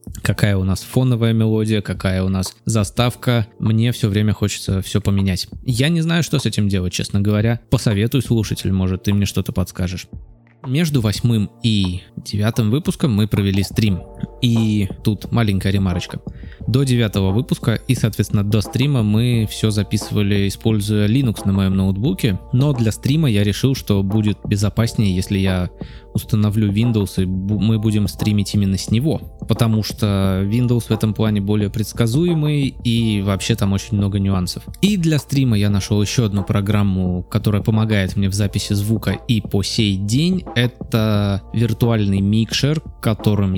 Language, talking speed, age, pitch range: Russian, 155 wpm, 20-39, 100-120 Hz